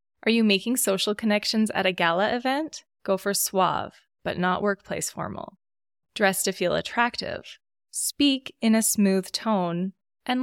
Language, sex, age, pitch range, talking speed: English, female, 20-39, 185-230 Hz, 150 wpm